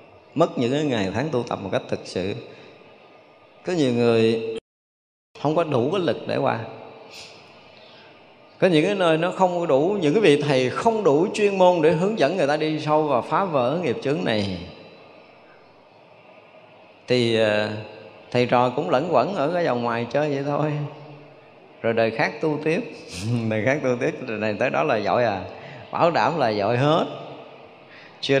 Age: 20-39